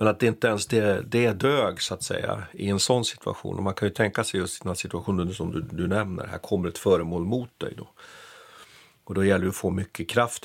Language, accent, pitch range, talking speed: Swedish, native, 100-135 Hz, 265 wpm